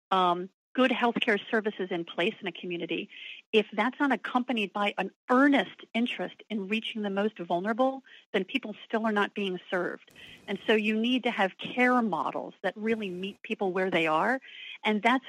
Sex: female